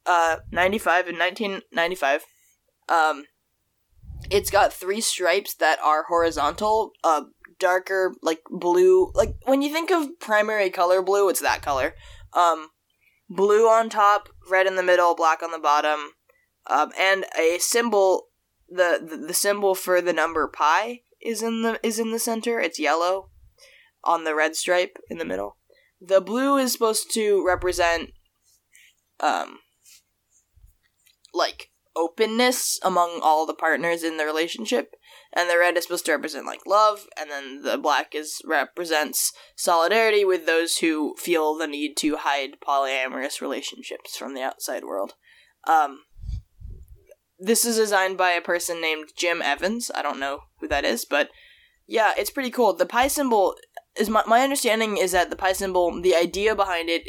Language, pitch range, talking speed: English, 160-220 Hz, 160 wpm